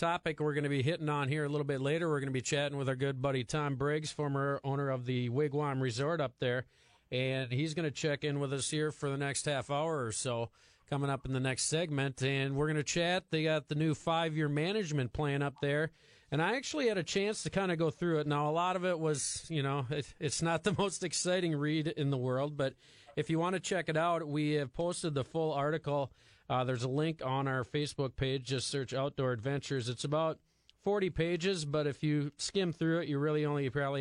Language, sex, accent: English, male, American